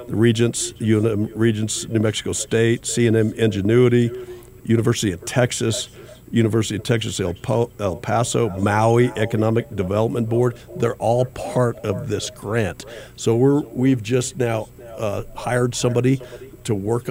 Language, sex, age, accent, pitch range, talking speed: English, male, 50-69, American, 105-120 Hz, 135 wpm